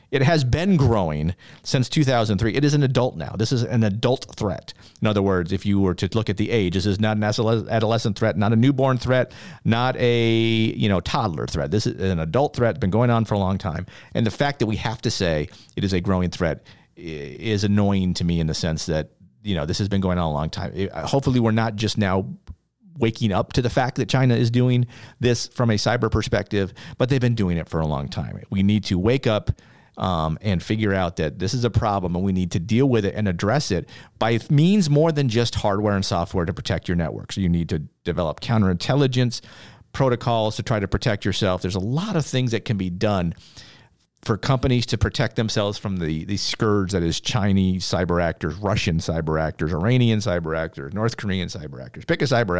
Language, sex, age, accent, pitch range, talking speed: English, male, 40-59, American, 95-120 Hz, 225 wpm